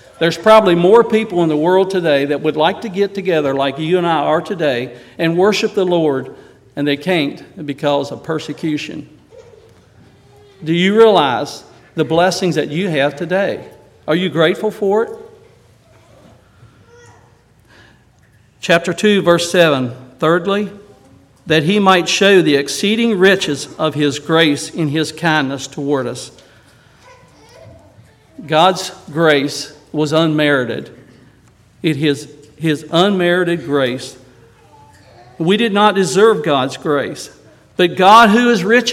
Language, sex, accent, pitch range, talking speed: English, male, American, 135-185 Hz, 130 wpm